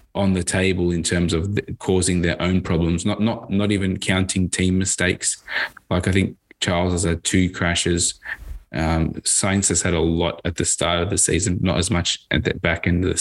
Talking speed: 210 wpm